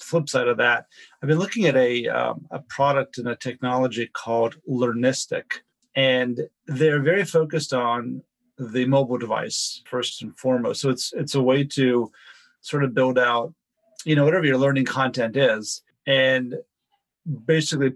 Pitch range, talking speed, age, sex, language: 125-145 Hz, 155 wpm, 40-59, male, English